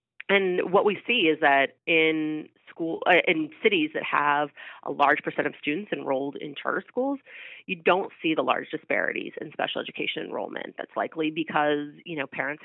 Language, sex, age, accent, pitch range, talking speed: English, female, 30-49, American, 140-185 Hz, 180 wpm